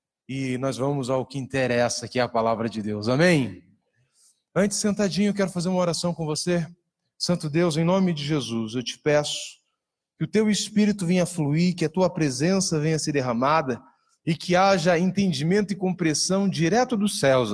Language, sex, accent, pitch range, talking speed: Portuguese, male, Brazilian, 140-190 Hz, 190 wpm